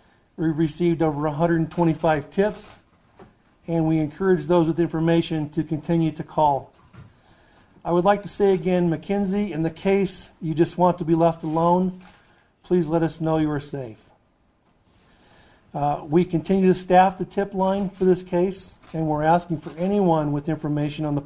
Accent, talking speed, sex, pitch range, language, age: American, 165 wpm, male, 155-175 Hz, English, 50-69